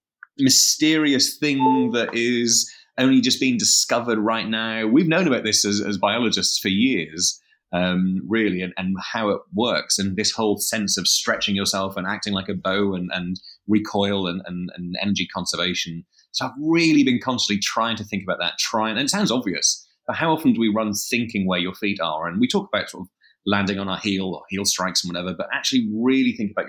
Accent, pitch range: British, 95-115 Hz